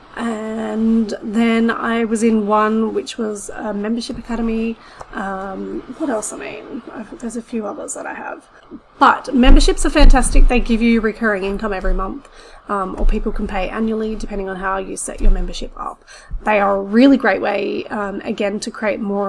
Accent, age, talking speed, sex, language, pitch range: Australian, 30-49, 185 wpm, female, English, 205-255 Hz